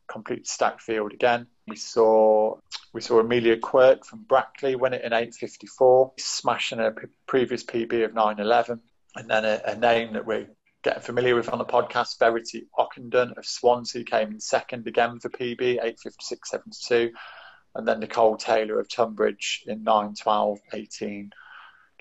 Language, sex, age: English, male, 30-49